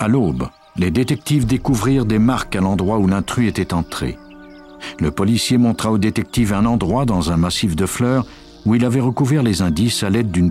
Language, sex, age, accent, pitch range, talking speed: French, male, 60-79, French, 85-115 Hz, 195 wpm